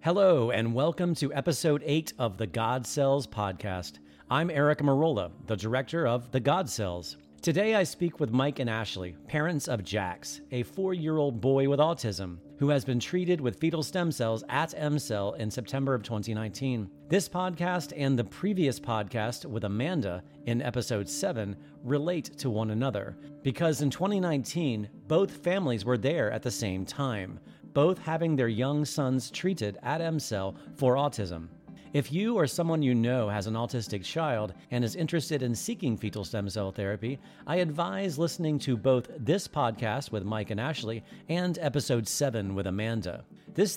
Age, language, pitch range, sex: 40-59, English, 110-155 Hz, male